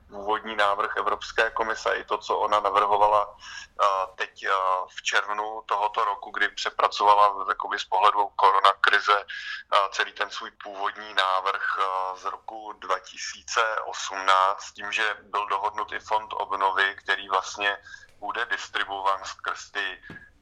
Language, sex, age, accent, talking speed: Czech, male, 20-39, native, 120 wpm